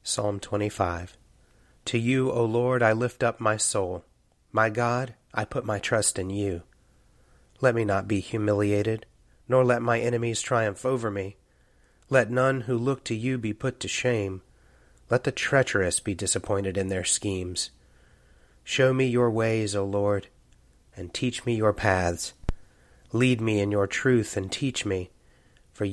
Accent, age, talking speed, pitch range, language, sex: American, 30-49, 160 wpm, 100-120 Hz, English, male